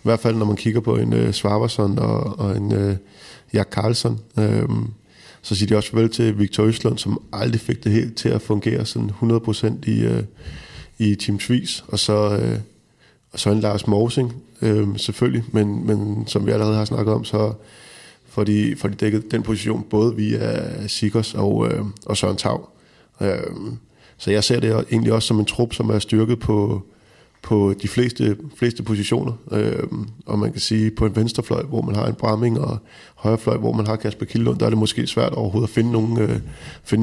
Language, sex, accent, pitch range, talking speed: Danish, male, native, 105-115 Hz, 190 wpm